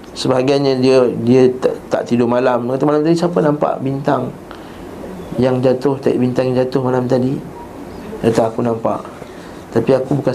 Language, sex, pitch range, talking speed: Malay, male, 130-185 Hz, 155 wpm